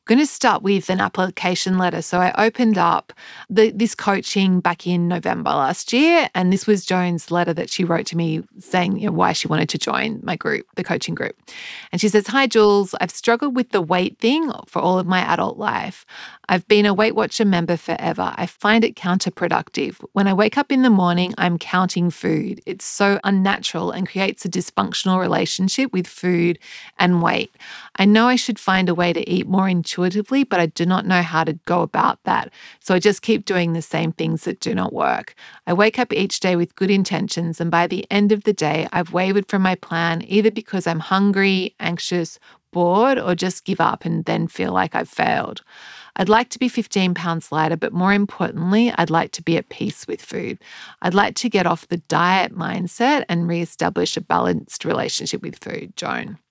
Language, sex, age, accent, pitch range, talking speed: English, female, 30-49, Australian, 175-210 Hz, 205 wpm